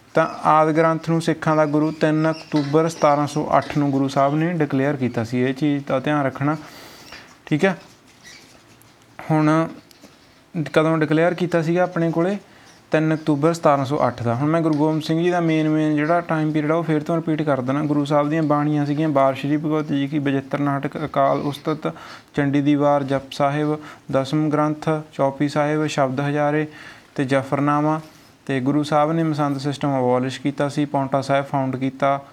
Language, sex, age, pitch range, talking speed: Punjabi, male, 20-39, 140-155 Hz, 175 wpm